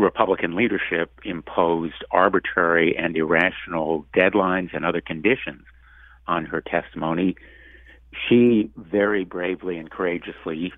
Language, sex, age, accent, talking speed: English, male, 60-79, American, 100 wpm